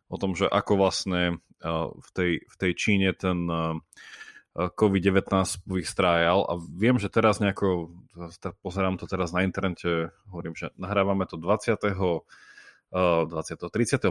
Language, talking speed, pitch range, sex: Slovak, 125 wpm, 90-105 Hz, male